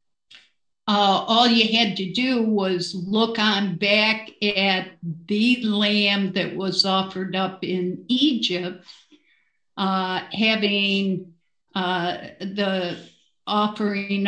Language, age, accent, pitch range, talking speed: English, 50-69, American, 185-220 Hz, 100 wpm